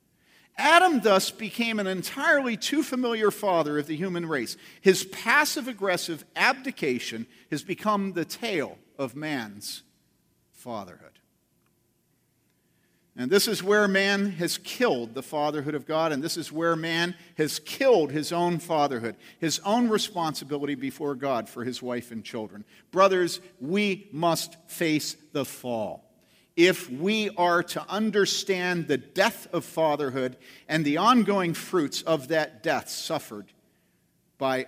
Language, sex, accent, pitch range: English, male, American, 150-215 Hz